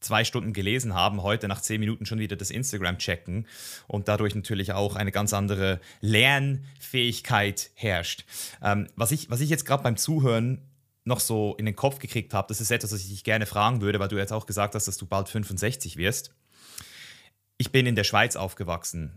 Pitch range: 105-130 Hz